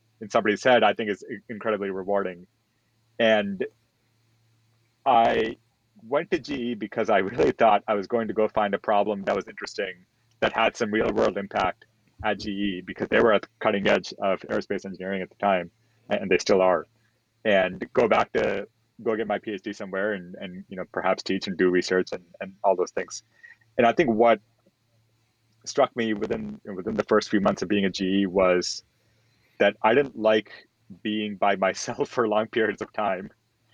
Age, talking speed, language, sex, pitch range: 30-49, 185 wpm, English, male, 95-115 Hz